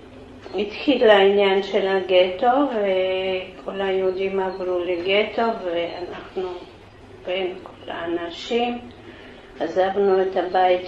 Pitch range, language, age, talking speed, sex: 190-225 Hz, Hebrew, 50-69, 85 wpm, female